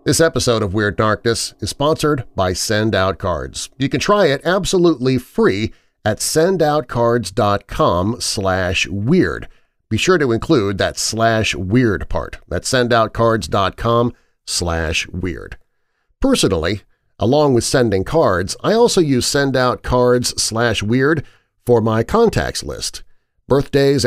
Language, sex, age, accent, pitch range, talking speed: English, male, 40-59, American, 100-140 Hz, 105 wpm